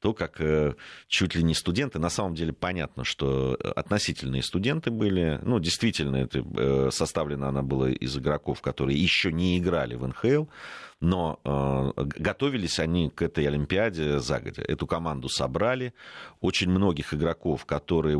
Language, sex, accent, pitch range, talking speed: Russian, male, native, 70-95 Hz, 140 wpm